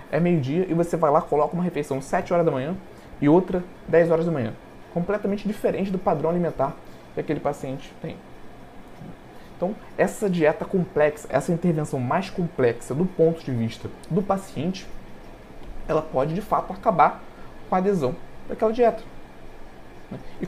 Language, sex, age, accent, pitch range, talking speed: Portuguese, male, 20-39, Brazilian, 145-195 Hz, 155 wpm